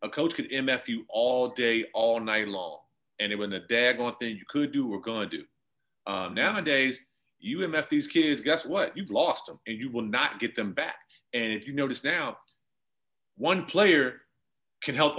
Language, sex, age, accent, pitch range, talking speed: English, male, 30-49, American, 130-170 Hz, 195 wpm